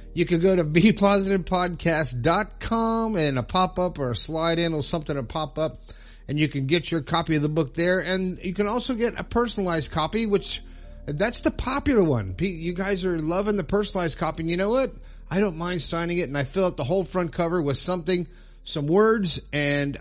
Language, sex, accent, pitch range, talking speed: English, male, American, 130-180 Hz, 205 wpm